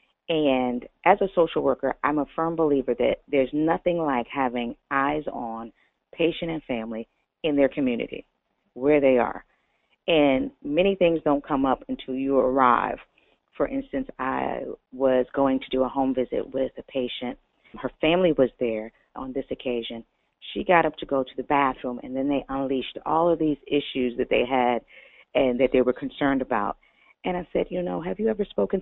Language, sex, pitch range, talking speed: English, female, 130-160 Hz, 185 wpm